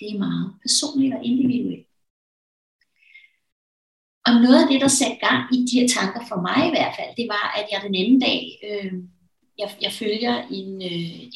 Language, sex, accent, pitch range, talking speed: Danish, female, native, 195-250 Hz, 185 wpm